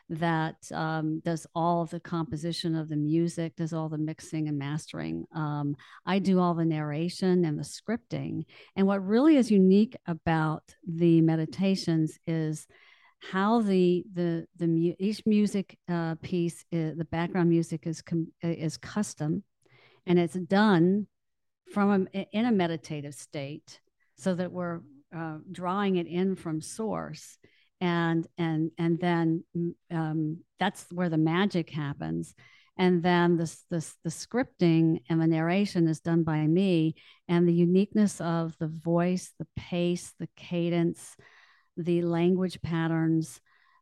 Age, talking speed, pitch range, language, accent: 50-69, 140 wpm, 160-185 Hz, English, American